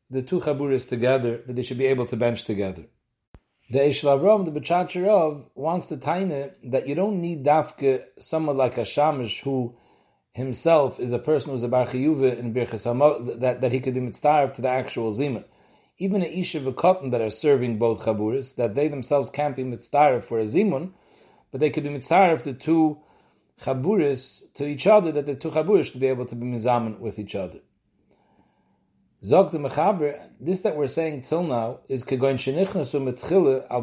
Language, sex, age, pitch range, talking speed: English, male, 40-59, 125-160 Hz, 185 wpm